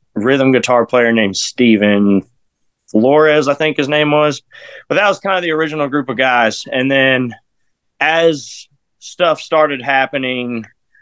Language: English